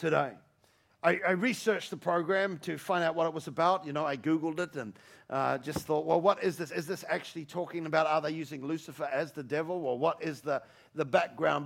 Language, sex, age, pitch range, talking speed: English, male, 40-59, 145-190 Hz, 230 wpm